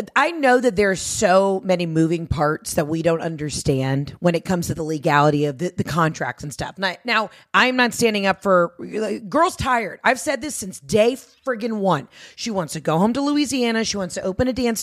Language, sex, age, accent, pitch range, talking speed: English, female, 30-49, American, 175-240 Hz, 210 wpm